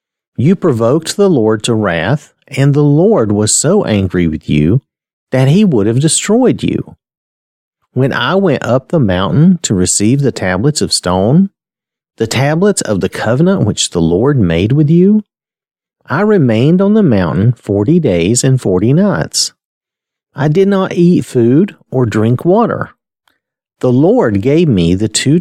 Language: English